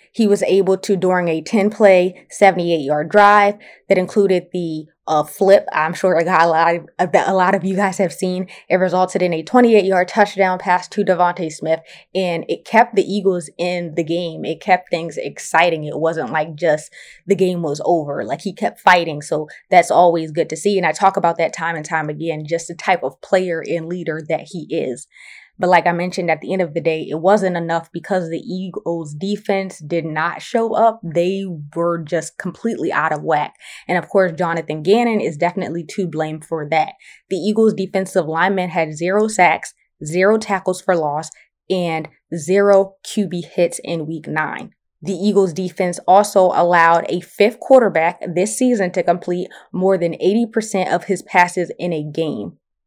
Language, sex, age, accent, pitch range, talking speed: English, female, 20-39, American, 165-195 Hz, 185 wpm